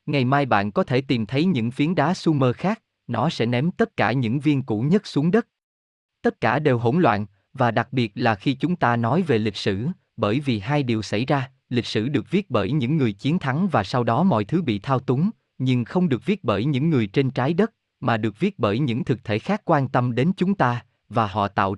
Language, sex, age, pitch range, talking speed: Vietnamese, male, 20-39, 115-160 Hz, 240 wpm